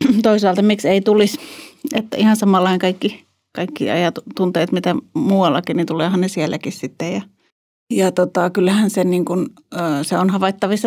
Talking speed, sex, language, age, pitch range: 155 wpm, female, Finnish, 30-49, 170-200 Hz